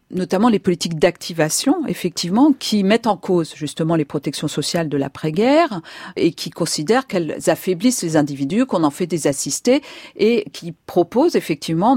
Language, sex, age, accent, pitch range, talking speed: French, female, 50-69, French, 165-220 Hz, 155 wpm